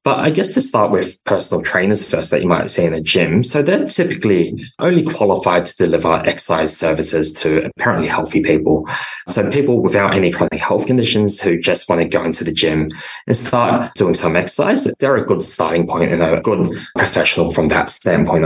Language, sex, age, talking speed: English, male, 20-39, 200 wpm